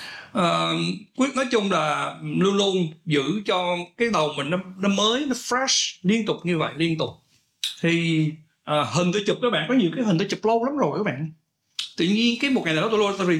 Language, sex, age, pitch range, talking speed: Vietnamese, male, 60-79, 155-215 Hz, 220 wpm